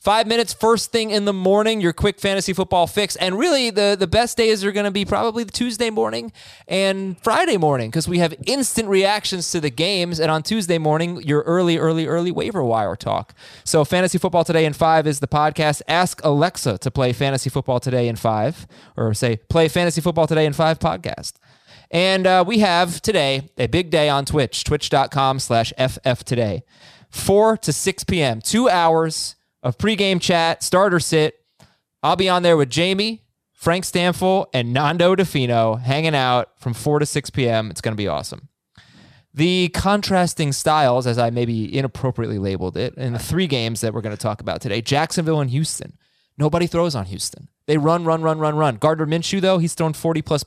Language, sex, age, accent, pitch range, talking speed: English, male, 20-39, American, 135-180 Hz, 195 wpm